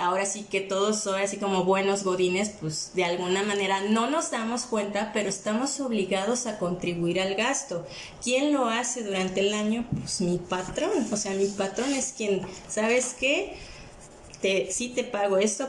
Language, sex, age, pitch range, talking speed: Spanish, female, 20-39, 185-220 Hz, 175 wpm